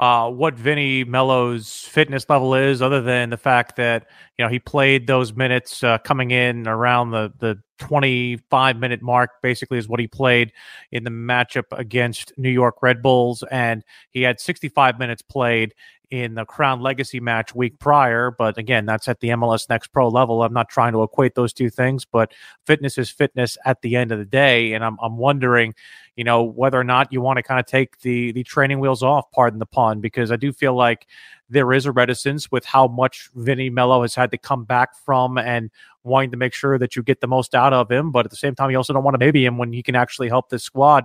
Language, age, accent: English, 30-49, American